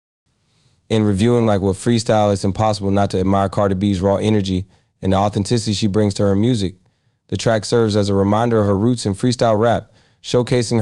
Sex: male